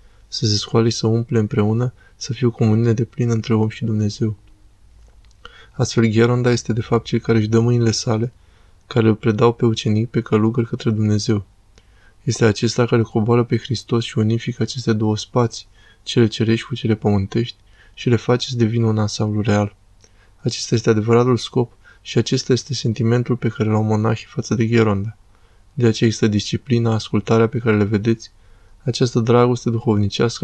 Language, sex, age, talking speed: Romanian, male, 20-39, 170 wpm